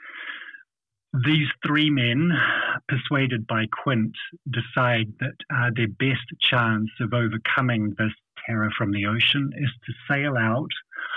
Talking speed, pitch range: 125 wpm, 110-140 Hz